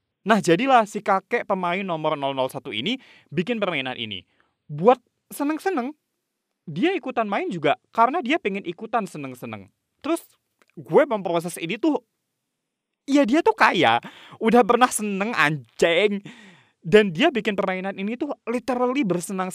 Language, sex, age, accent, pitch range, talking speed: Indonesian, male, 20-39, native, 140-230 Hz, 130 wpm